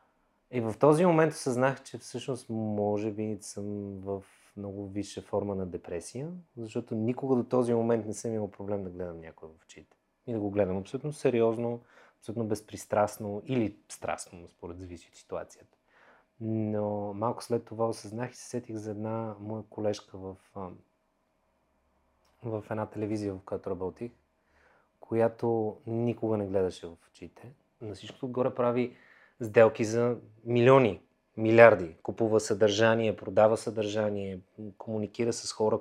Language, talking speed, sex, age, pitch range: Bulgarian, 140 wpm, male, 30-49, 100-120 Hz